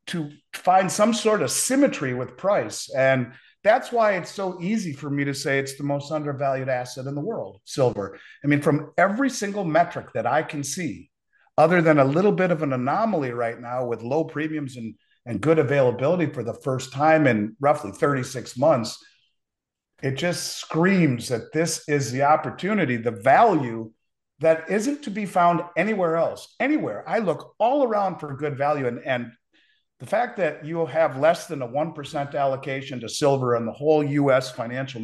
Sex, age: male, 40-59